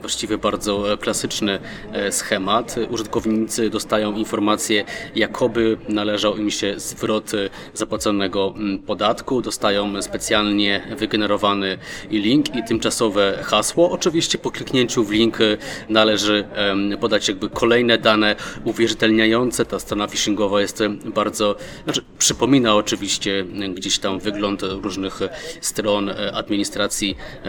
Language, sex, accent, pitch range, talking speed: Polish, male, native, 100-115 Hz, 100 wpm